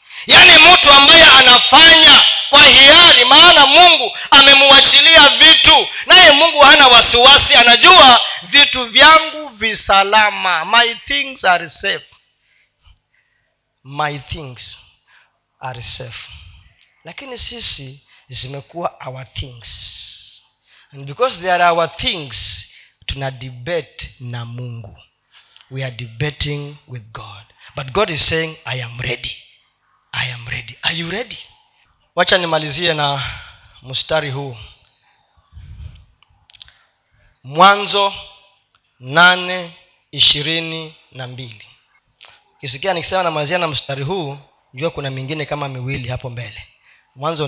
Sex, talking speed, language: male, 105 wpm, Swahili